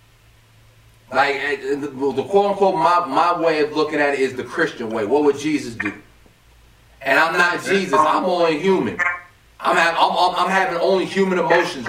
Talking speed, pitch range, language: 165 wpm, 115-190 Hz, English